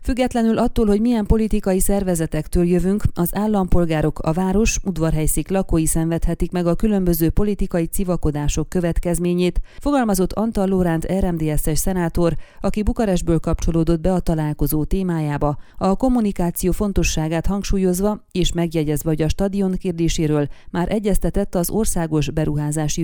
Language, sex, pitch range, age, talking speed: Hungarian, female, 160-195 Hz, 30-49, 120 wpm